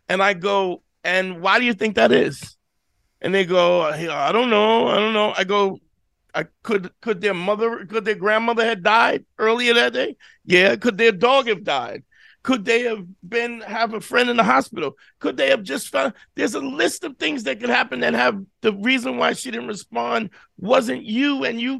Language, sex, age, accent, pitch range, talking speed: English, male, 50-69, American, 205-240 Hz, 205 wpm